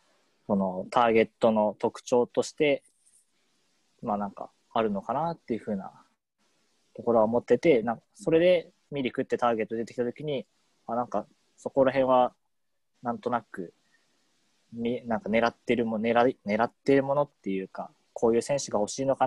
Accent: native